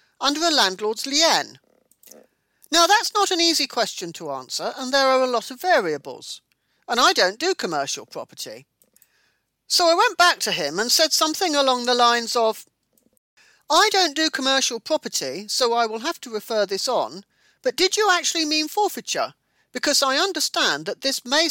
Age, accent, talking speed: 40-59, British, 175 wpm